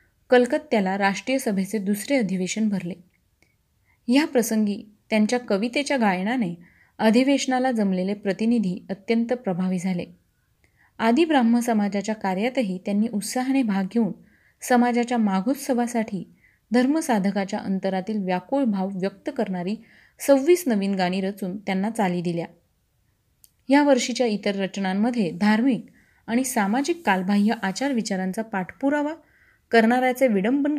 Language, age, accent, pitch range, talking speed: Marathi, 30-49, native, 195-245 Hz, 105 wpm